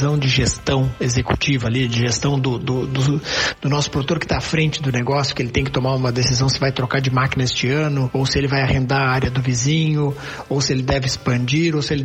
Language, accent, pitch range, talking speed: Portuguese, Brazilian, 130-170 Hz, 245 wpm